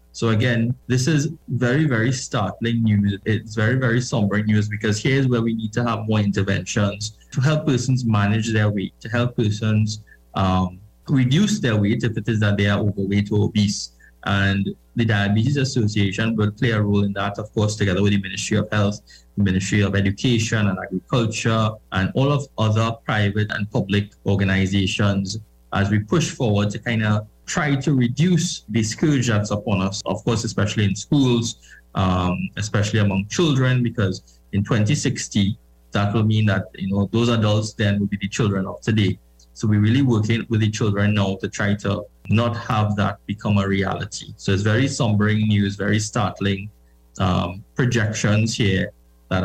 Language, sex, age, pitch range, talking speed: English, male, 20-39, 100-115 Hz, 180 wpm